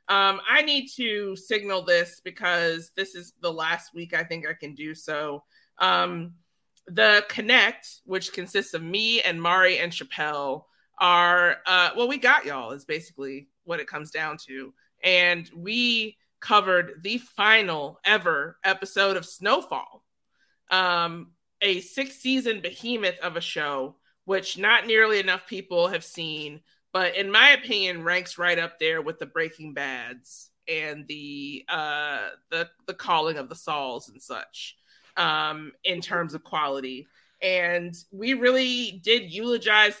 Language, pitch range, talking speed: English, 165-210 Hz, 150 wpm